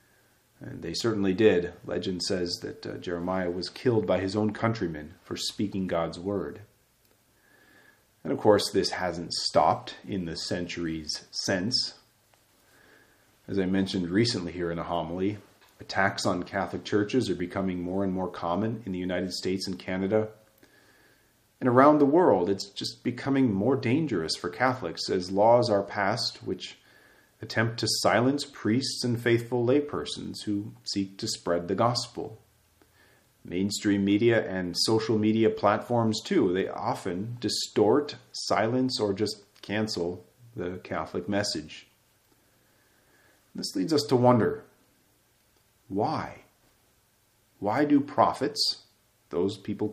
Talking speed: 130 wpm